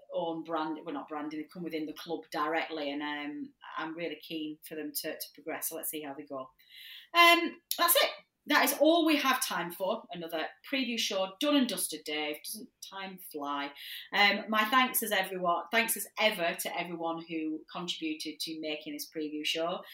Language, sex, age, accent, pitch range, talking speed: English, female, 30-49, British, 155-215 Hz, 200 wpm